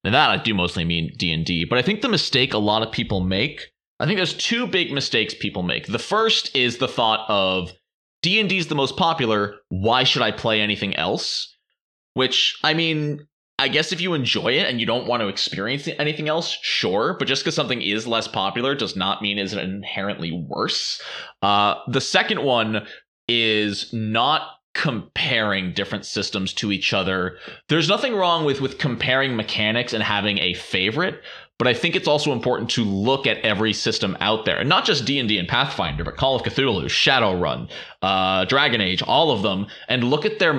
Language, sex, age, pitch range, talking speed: English, male, 20-39, 100-140 Hz, 190 wpm